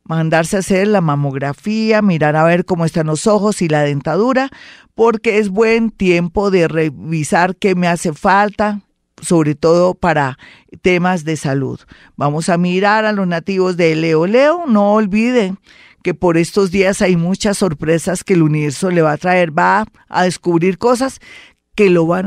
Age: 40-59